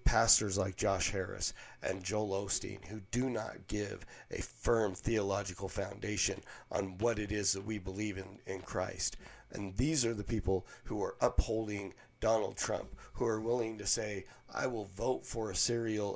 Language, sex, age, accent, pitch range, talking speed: English, male, 40-59, American, 100-115 Hz, 170 wpm